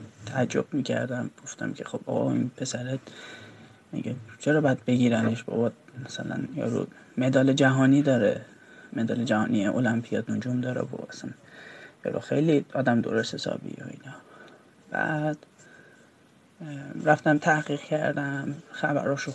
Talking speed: 120 wpm